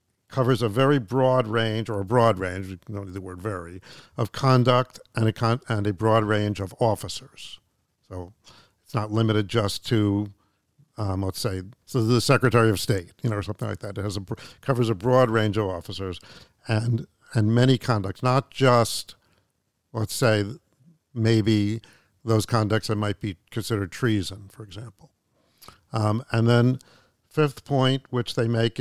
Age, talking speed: 50-69, 170 wpm